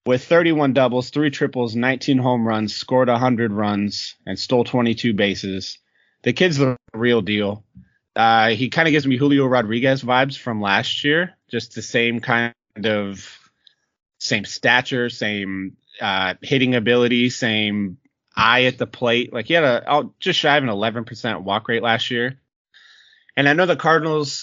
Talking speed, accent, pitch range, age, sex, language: 165 wpm, American, 110-135 Hz, 30-49, male, English